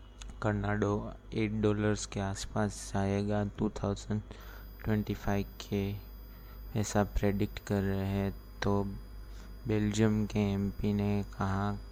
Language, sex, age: Hindi, male, 20-39